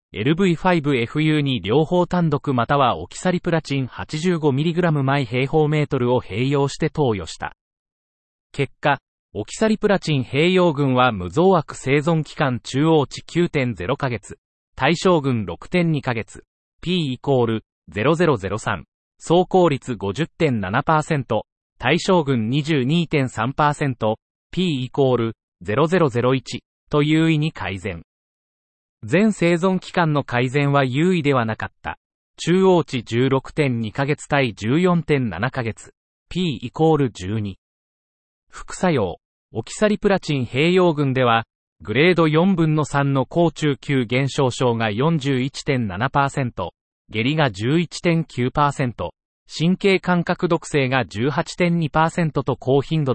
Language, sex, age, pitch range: Japanese, male, 40-59, 120-160 Hz